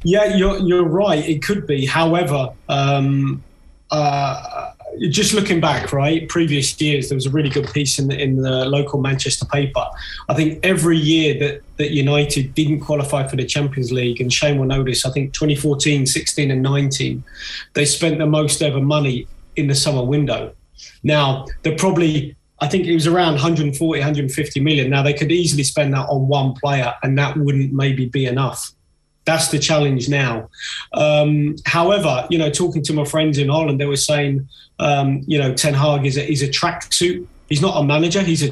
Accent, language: British, English